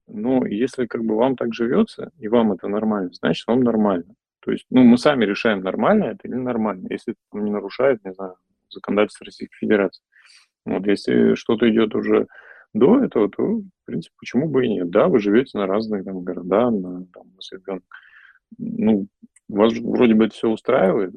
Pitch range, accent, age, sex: 100-130 Hz, native, 30-49, male